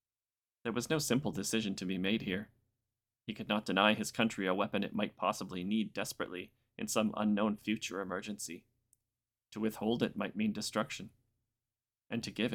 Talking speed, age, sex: 170 wpm, 30-49, male